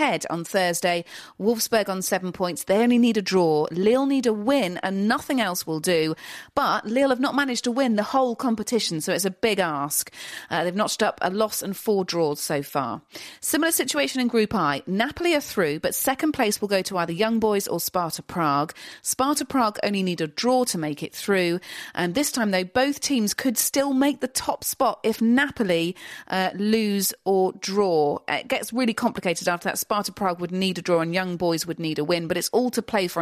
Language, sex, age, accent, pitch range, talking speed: English, female, 40-59, British, 170-235 Hz, 215 wpm